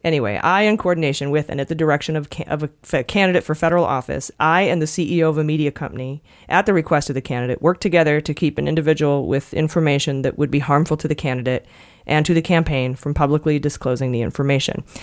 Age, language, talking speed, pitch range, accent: 30-49, English, 220 wpm, 145-170 Hz, American